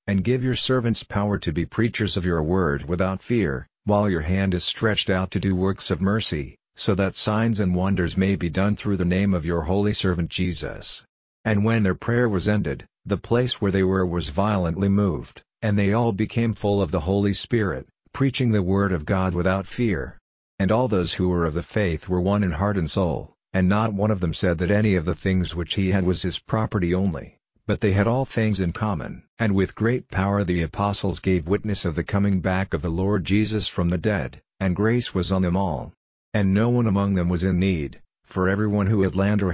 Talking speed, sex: 225 wpm, male